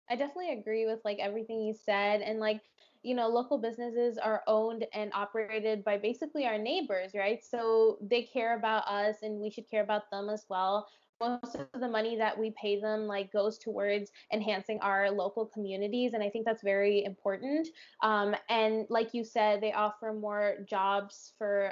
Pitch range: 205-230 Hz